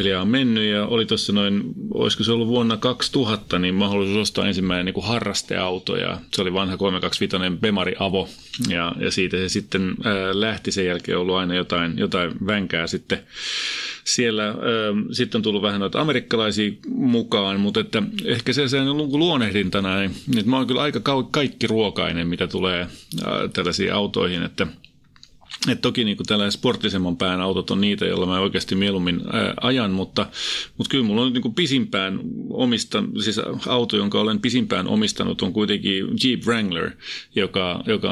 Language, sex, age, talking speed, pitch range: Finnish, male, 30-49, 160 wpm, 95-115 Hz